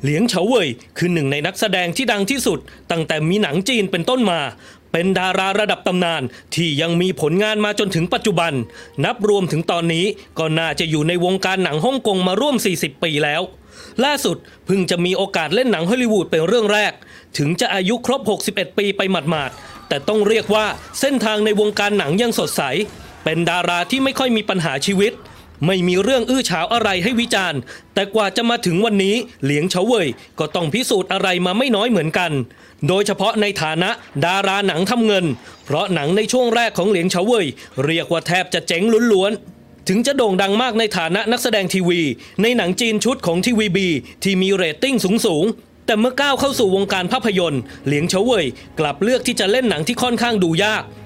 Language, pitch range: English, 175-220 Hz